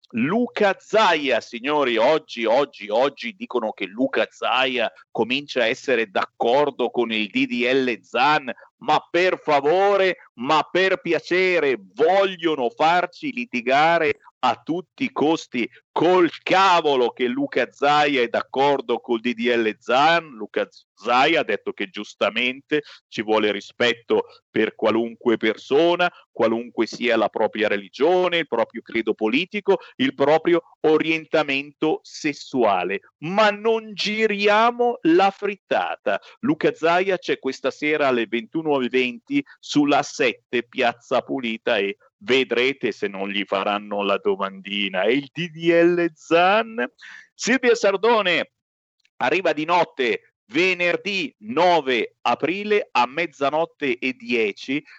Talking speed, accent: 120 wpm, native